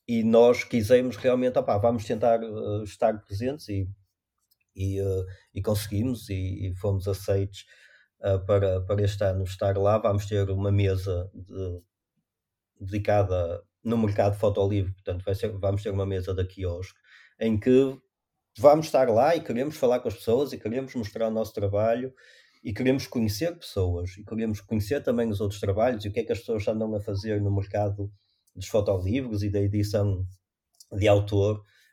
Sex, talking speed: male, 160 wpm